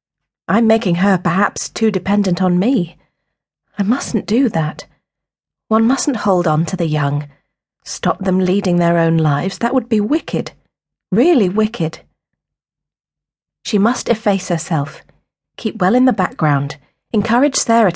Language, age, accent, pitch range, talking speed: English, 40-59, British, 150-205 Hz, 140 wpm